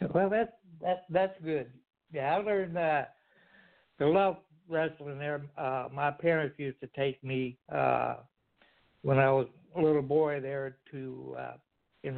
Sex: male